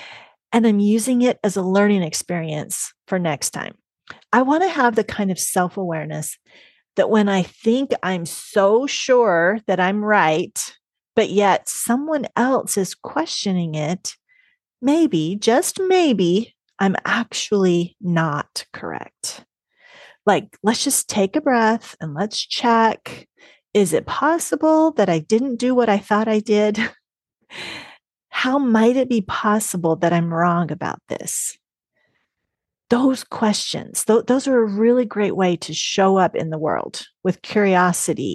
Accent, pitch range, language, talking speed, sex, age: American, 175-240 Hz, English, 140 wpm, female, 30-49